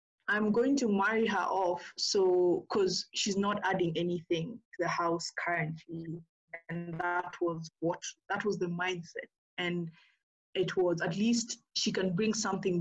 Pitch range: 165-200 Hz